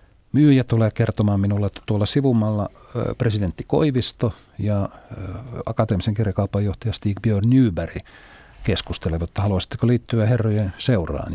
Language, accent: Finnish, native